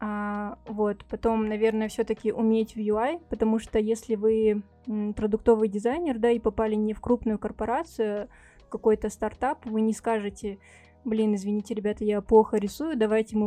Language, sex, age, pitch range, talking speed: Russian, female, 20-39, 210-230 Hz, 150 wpm